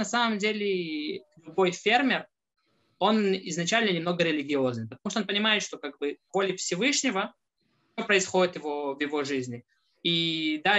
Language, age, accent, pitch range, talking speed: Russian, 20-39, native, 170-220 Hz, 135 wpm